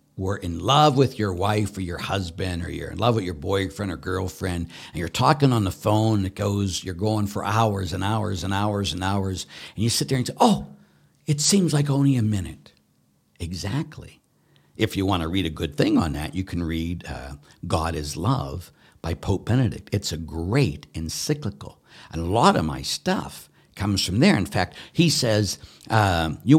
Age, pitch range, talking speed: 60-79, 85-120 Hz, 205 wpm